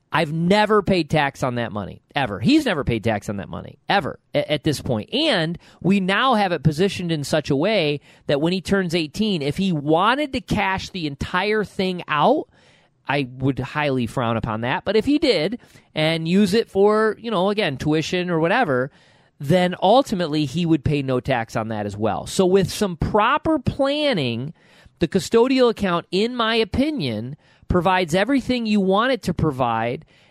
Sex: male